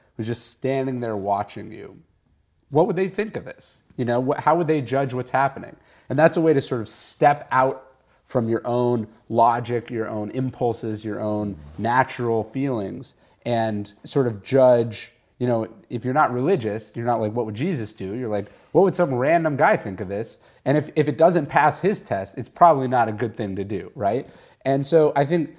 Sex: male